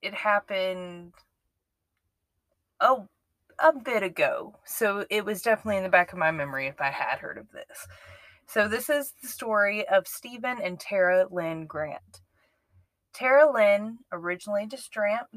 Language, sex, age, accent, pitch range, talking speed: English, female, 20-39, American, 185-230 Hz, 145 wpm